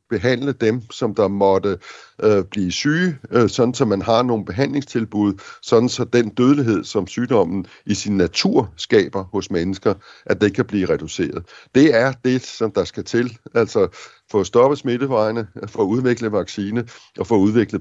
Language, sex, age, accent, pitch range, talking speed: Danish, male, 60-79, native, 100-125 Hz, 170 wpm